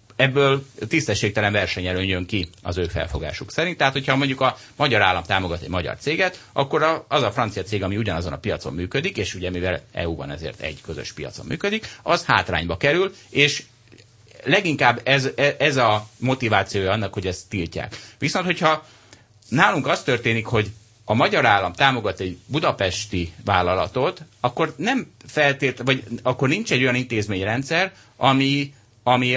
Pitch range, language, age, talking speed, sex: 100-140 Hz, Hungarian, 30-49, 155 wpm, male